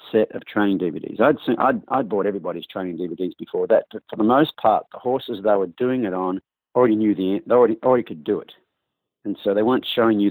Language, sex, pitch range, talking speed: English, male, 105-130 Hz, 235 wpm